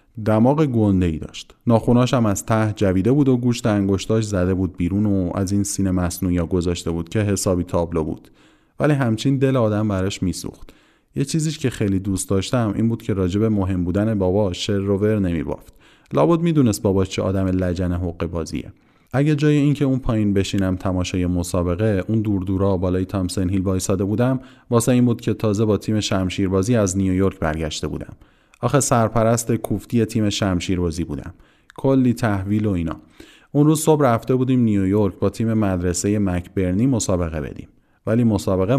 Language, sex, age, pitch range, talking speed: Persian, male, 30-49, 95-120 Hz, 165 wpm